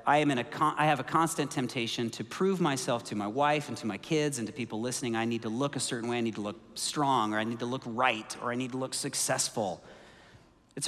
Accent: American